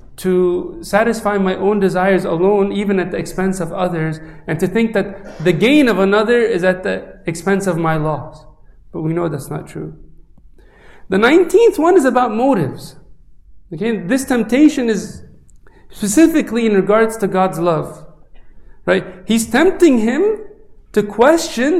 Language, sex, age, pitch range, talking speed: English, male, 40-59, 180-240 Hz, 150 wpm